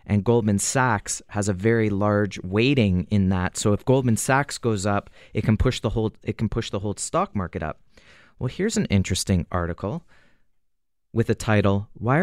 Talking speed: 185 wpm